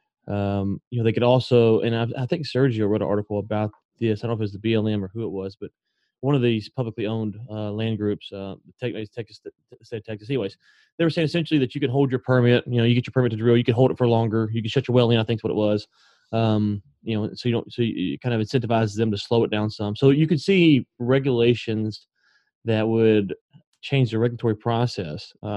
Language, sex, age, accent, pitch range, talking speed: English, male, 30-49, American, 105-120 Hz, 255 wpm